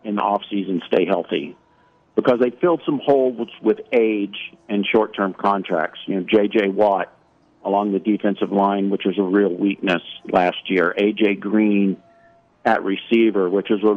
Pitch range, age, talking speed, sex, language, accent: 105-120 Hz, 50-69, 165 wpm, male, English, American